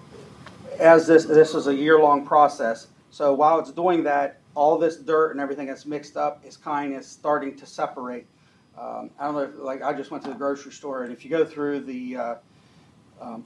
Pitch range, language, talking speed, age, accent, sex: 130-150 Hz, English, 210 wpm, 40-59, American, male